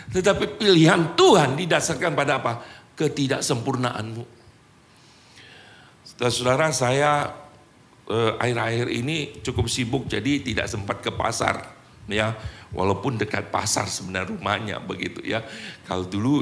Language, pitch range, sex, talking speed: Indonesian, 105-140 Hz, male, 105 wpm